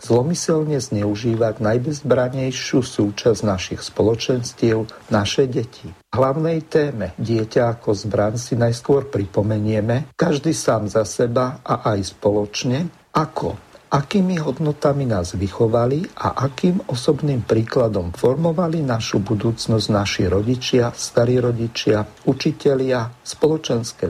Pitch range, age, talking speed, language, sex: 105-140 Hz, 50-69, 100 wpm, Slovak, male